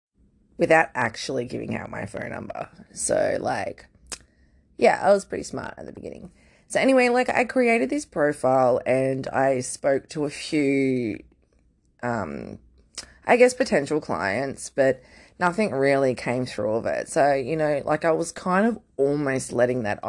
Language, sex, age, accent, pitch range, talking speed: English, female, 20-39, Australian, 140-200 Hz, 160 wpm